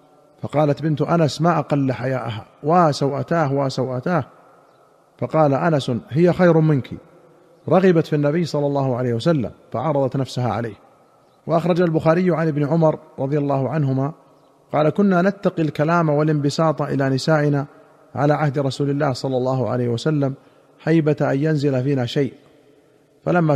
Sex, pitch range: male, 140-165 Hz